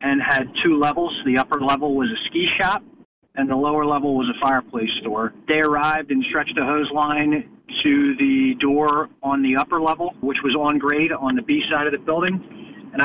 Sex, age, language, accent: male, 40-59, English, American